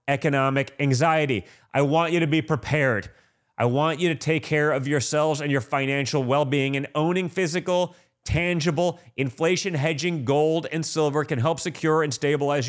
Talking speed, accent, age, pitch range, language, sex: 160 wpm, American, 30-49, 140-175 Hz, English, male